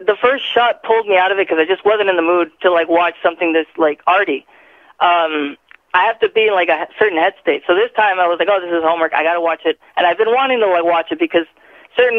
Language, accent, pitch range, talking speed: English, American, 170-240 Hz, 280 wpm